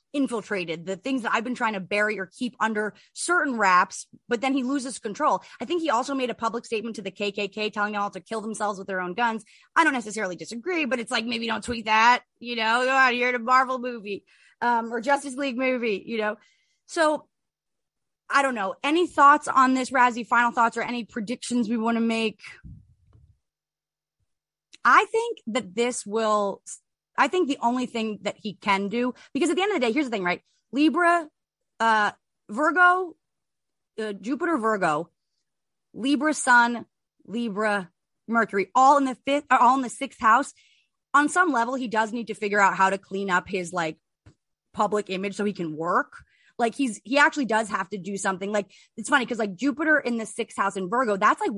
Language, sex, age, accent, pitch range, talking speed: English, female, 30-49, American, 205-265 Hz, 200 wpm